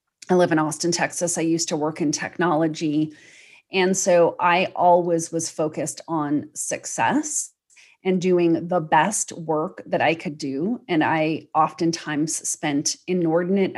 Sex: female